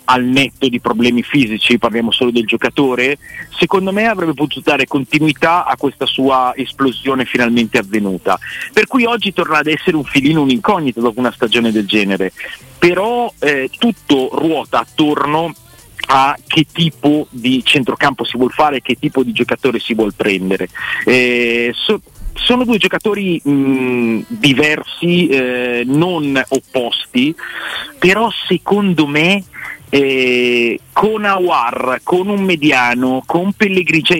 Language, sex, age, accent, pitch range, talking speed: Italian, male, 40-59, native, 125-165 Hz, 130 wpm